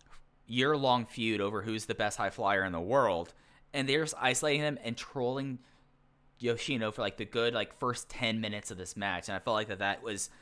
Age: 20-39